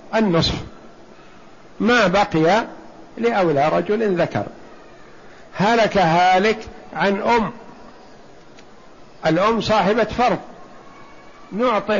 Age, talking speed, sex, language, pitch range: 60-79, 70 wpm, male, Arabic, 170-215 Hz